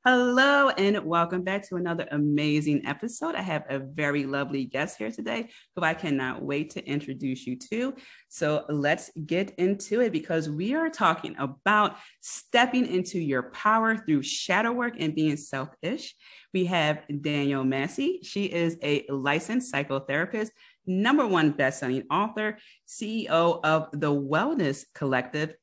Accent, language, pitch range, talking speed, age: American, English, 150-215 Hz, 145 wpm, 30-49